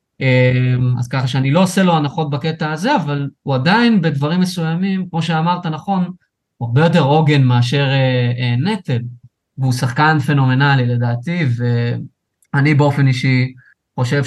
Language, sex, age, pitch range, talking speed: Hebrew, male, 20-39, 125-155 Hz, 130 wpm